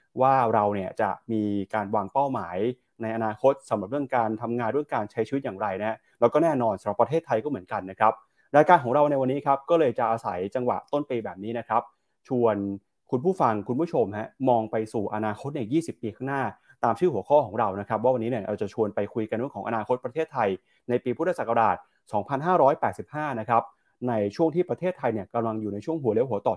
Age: 20-39